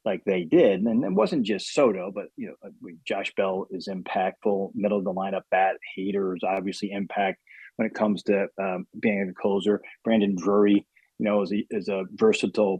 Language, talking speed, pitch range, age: English, 185 wpm, 100-135 Hz, 30-49